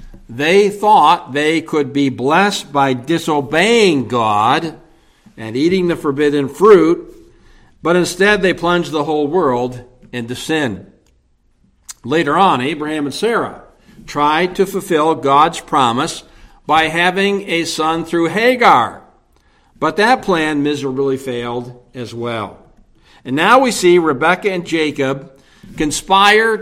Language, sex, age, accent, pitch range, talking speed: English, male, 60-79, American, 135-200 Hz, 120 wpm